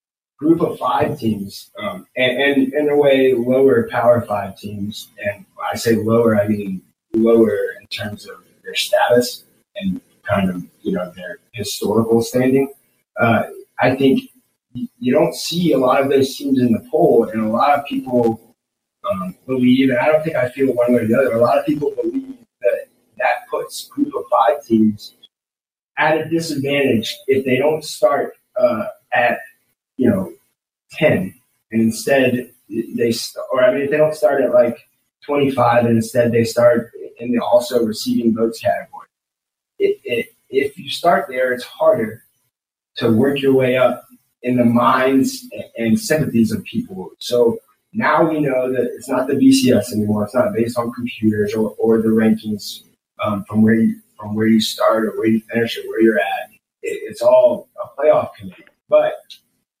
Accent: American